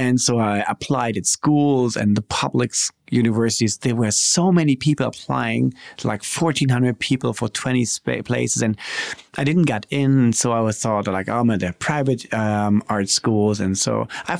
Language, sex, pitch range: Bulgarian, male, 110-145 Hz